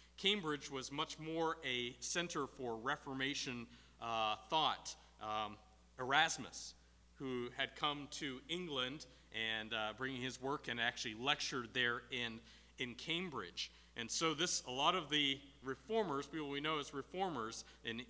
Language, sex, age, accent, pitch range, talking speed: English, male, 40-59, American, 110-150 Hz, 145 wpm